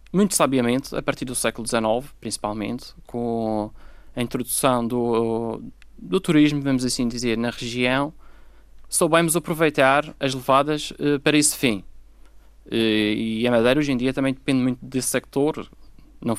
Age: 20-39